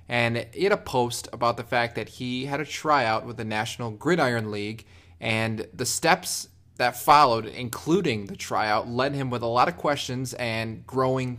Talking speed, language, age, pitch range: 185 wpm, English, 20-39, 105-130 Hz